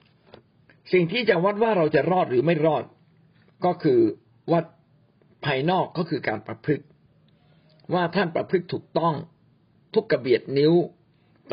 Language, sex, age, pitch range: Thai, male, 60-79, 135-175 Hz